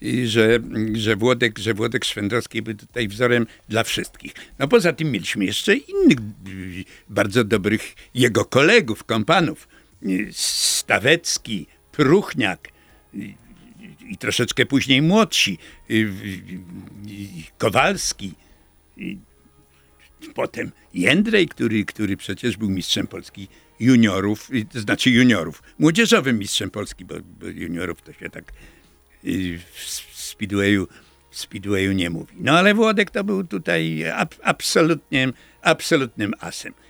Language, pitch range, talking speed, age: Polish, 95-125 Hz, 105 wpm, 60-79